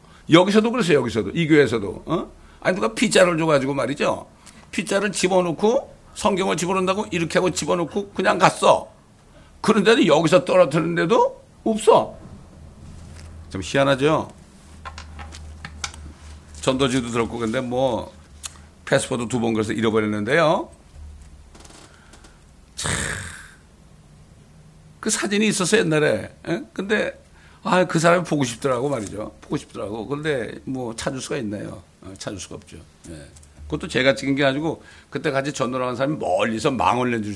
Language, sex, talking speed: English, male, 110 wpm